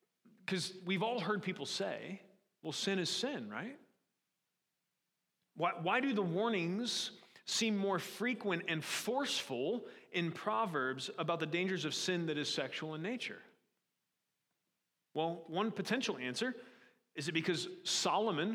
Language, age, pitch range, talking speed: English, 30-49, 155-205 Hz, 130 wpm